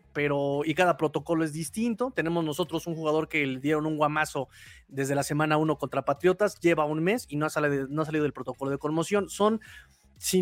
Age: 30-49